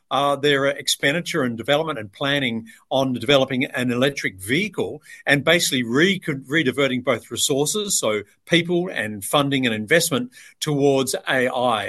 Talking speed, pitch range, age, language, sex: 130 wpm, 125-150 Hz, 50-69, English, male